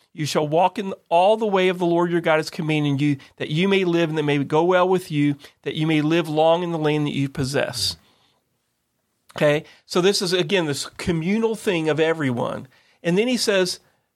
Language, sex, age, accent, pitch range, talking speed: English, male, 40-59, American, 145-180 Hz, 215 wpm